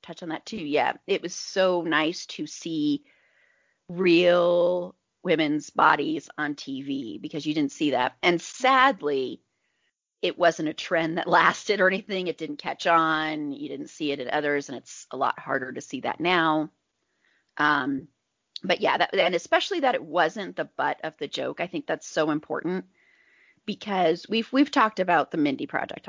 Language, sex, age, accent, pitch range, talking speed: English, female, 30-49, American, 170-245 Hz, 175 wpm